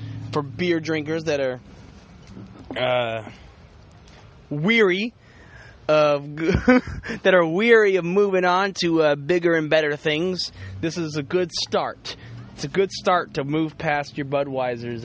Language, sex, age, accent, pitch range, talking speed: English, male, 20-39, American, 125-185 Hz, 135 wpm